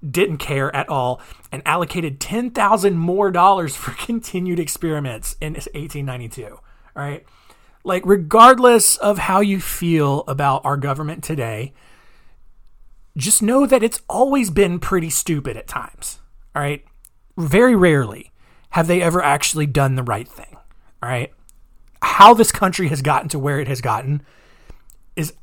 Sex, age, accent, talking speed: male, 30-49, American, 145 wpm